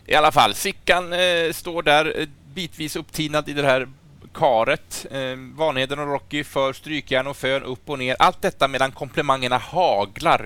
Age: 30-49